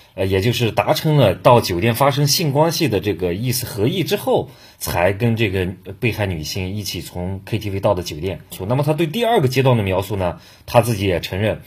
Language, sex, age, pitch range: Chinese, male, 30-49, 95-125 Hz